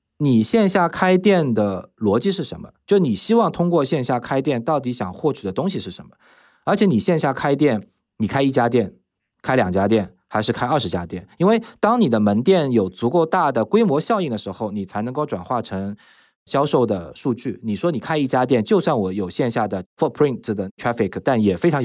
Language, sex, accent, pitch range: Chinese, male, native, 110-165 Hz